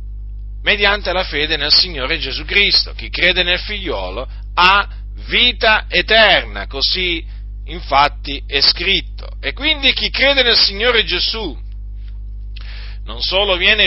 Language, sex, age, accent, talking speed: Italian, male, 40-59, native, 120 wpm